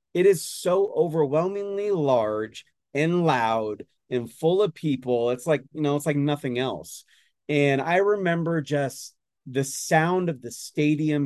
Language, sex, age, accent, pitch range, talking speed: English, male, 30-49, American, 120-155 Hz, 150 wpm